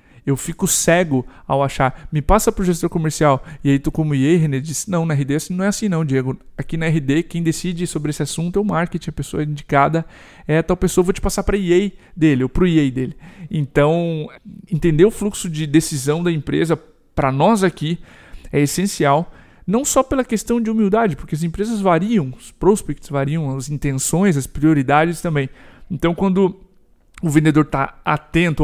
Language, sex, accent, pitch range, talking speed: Portuguese, male, Brazilian, 145-175 Hz, 195 wpm